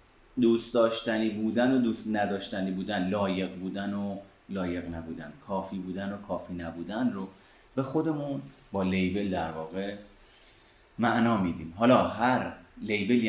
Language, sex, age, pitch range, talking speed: Persian, male, 30-49, 95-120 Hz, 130 wpm